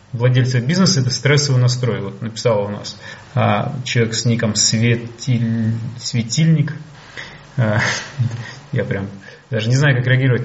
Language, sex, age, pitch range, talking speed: Russian, male, 30-49, 120-145 Hz, 130 wpm